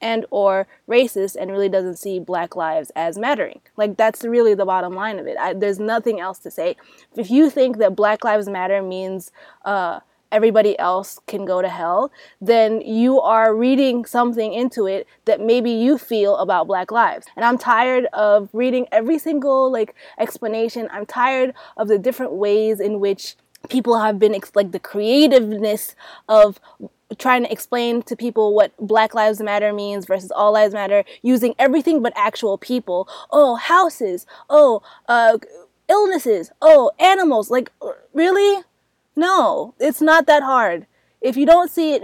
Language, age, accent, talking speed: English, 20-39, American, 165 wpm